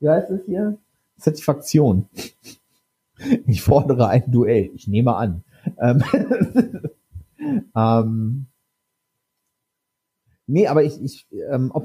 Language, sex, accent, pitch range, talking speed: German, male, German, 115-165 Hz, 100 wpm